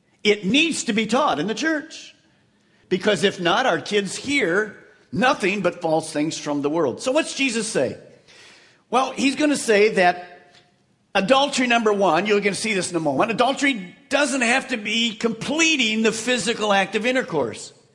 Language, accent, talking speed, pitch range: English, American, 175 wpm, 175-250 Hz